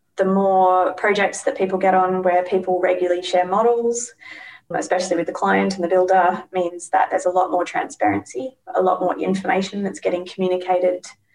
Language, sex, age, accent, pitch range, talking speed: English, female, 20-39, Australian, 175-190 Hz, 175 wpm